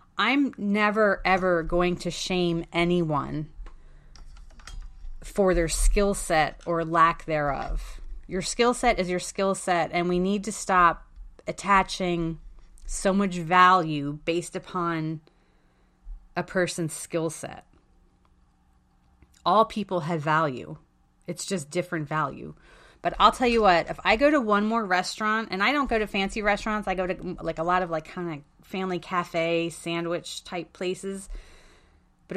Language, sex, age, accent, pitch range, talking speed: English, female, 30-49, American, 160-200 Hz, 145 wpm